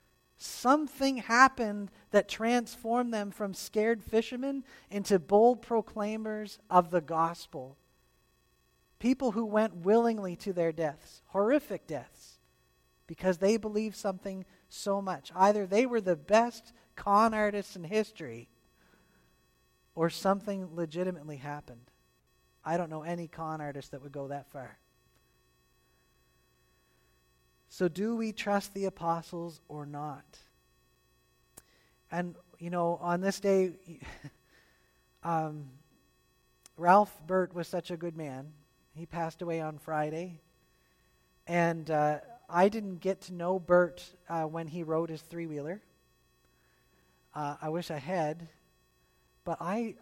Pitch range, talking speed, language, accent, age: 140-200 Hz, 120 wpm, English, American, 40-59